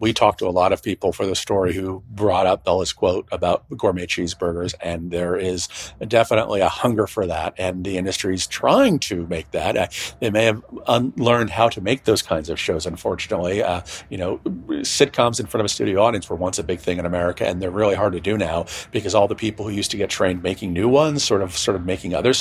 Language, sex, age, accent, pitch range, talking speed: English, male, 40-59, American, 90-110 Hz, 235 wpm